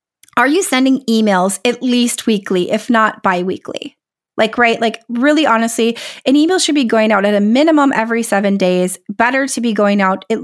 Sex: female